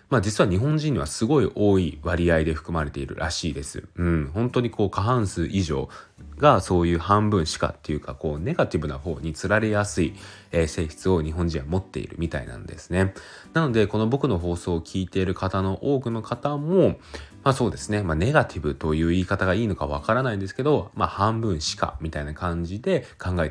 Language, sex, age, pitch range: Japanese, male, 20-39, 80-110 Hz